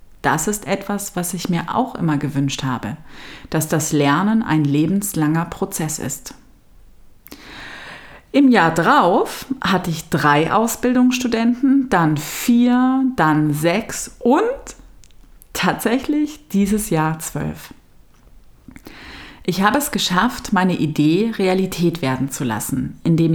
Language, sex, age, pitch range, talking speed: German, female, 30-49, 150-210 Hz, 115 wpm